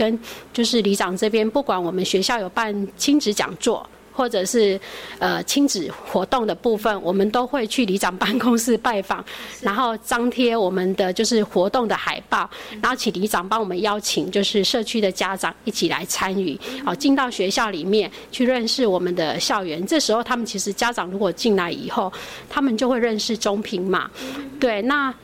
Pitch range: 190-240 Hz